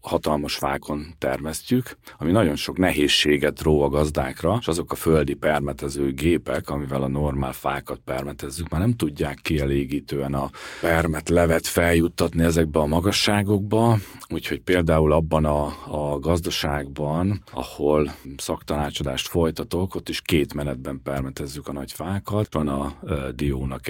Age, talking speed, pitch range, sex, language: 40-59, 135 wpm, 70-85 Hz, male, Hungarian